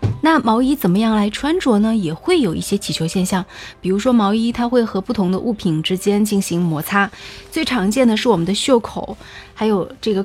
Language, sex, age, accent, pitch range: Chinese, female, 20-39, native, 195-255 Hz